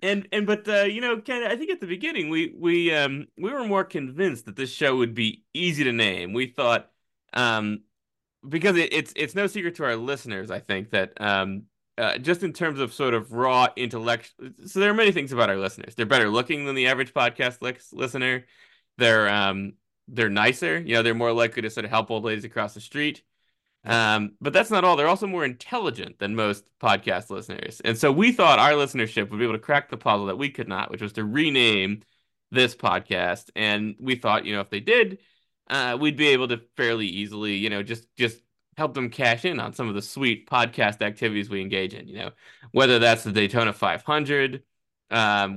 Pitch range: 105-150 Hz